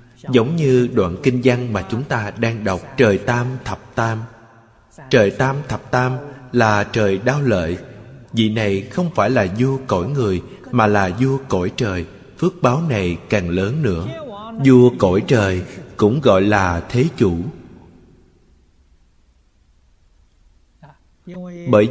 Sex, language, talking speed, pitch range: male, Vietnamese, 135 wpm, 100-130 Hz